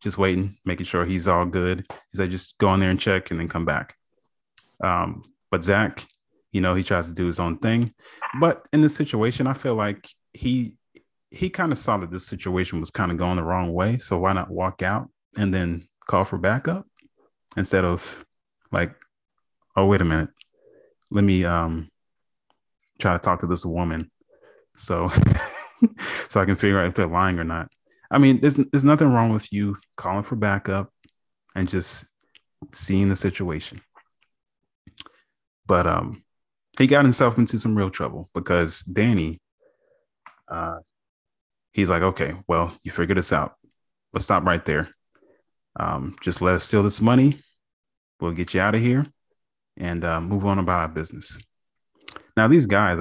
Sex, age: male, 30-49